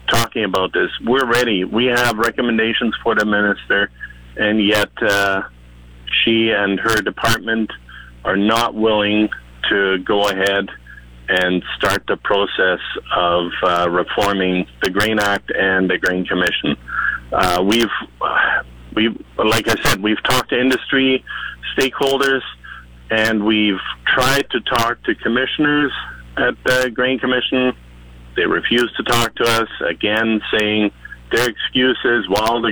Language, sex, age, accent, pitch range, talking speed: English, male, 40-59, American, 95-120 Hz, 135 wpm